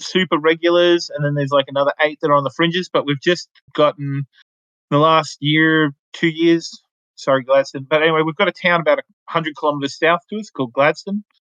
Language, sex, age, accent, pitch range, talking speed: English, male, 30-49, Australian, 135-165 Hz, 205 wpm